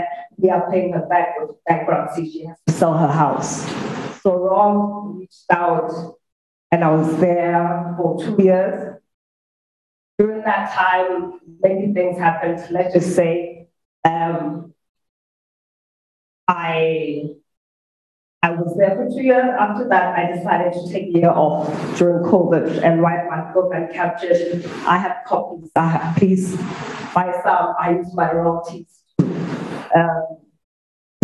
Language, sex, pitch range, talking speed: English, female, 170-195 Hz, 140 wpm